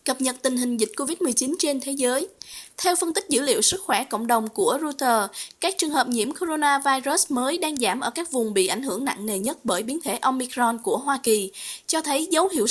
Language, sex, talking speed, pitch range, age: Vietnamese, female, 225 wpm, 240-315 Hz, 20-39